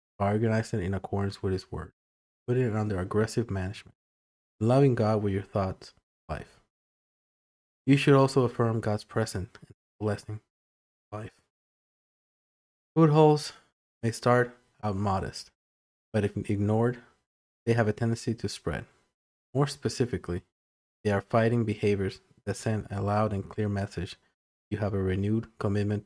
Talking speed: 140 wpm